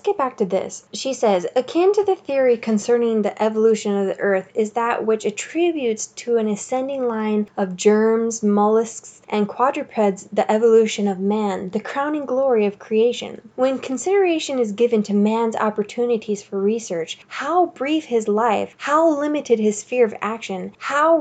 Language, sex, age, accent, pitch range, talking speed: English, female, 10-29, American, 210-255 Hz, 165 wpm